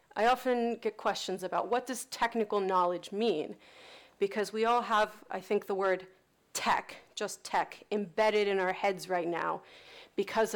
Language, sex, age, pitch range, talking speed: Danish, female, 30-49, 190-235 Hz, 160 wpm